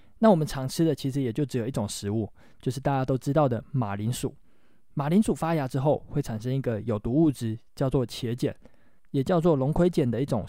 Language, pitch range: Chinese, 120-155 Hz